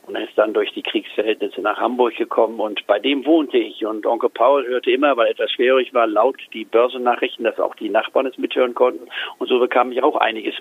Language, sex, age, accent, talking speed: German, male, 50-69, German, 225 wpm